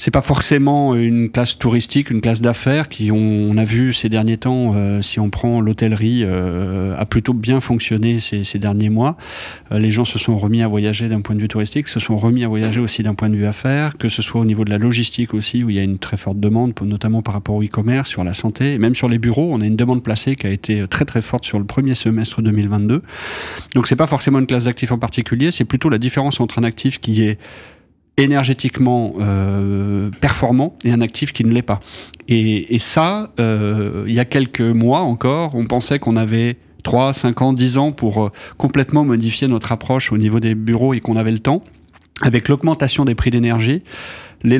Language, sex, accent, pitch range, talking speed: French, male, French, 110-130 Hz, 220 wpm